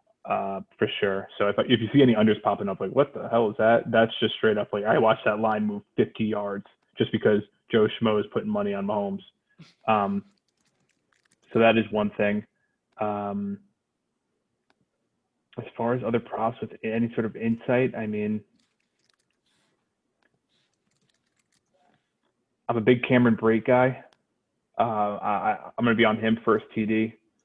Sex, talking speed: male, 160 wpm